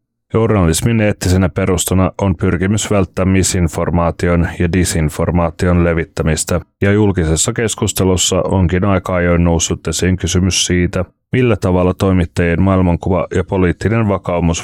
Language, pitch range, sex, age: Finnish, 85-105 Hz, male, 30-49